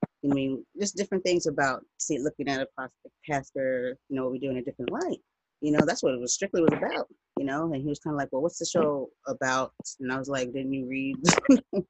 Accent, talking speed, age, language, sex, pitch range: American, 240 wpm, 30-49, English, female, 135-165 Hz